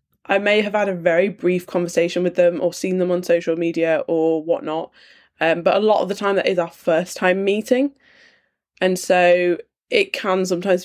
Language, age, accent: English, 10-29, British